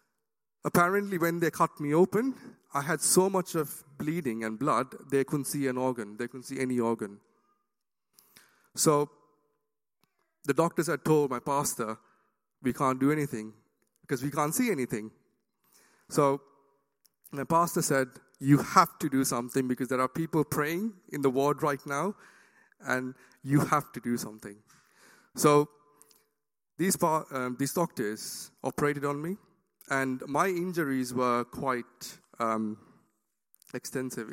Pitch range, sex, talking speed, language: 130-160 Hz, male, 140 wpm, English